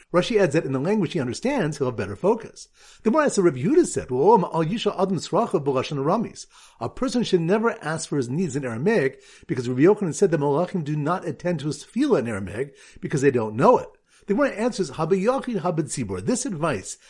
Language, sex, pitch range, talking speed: English, male, 140-205 Hz, 195 wpm